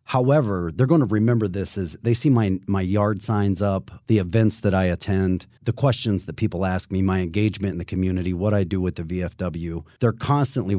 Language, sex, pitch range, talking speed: English, male, 90-125 Hz, 210 wpm